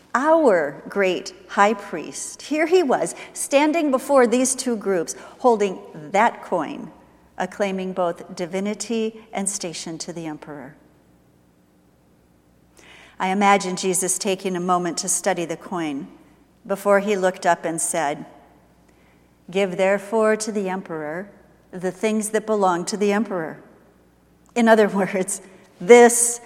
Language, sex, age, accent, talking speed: English, female, 50-69, American, 125 wpm